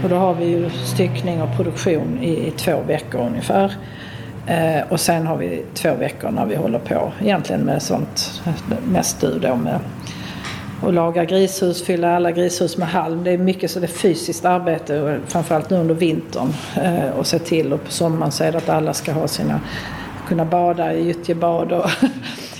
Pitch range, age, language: 160-180 Hz, 50-69, Swedish